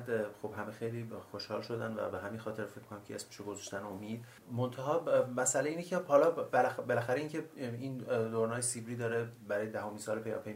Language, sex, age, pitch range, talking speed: Persian, male, 30-49, 105-125 Hz, 175 wpm